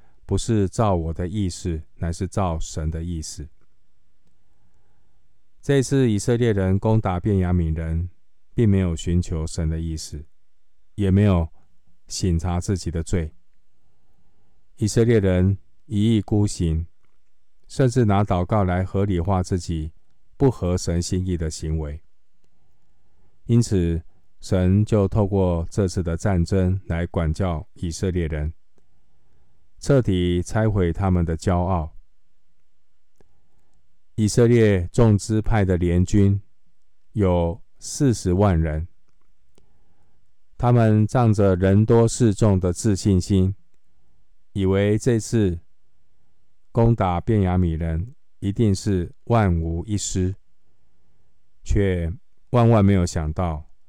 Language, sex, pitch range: Chinese, male, 85-105 Hz